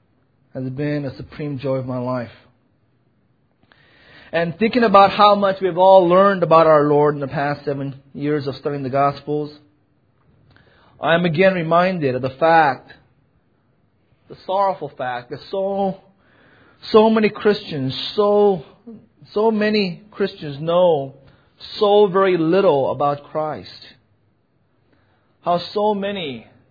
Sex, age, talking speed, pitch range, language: male, 30-49, 125 wpm, 130-180 Hz, English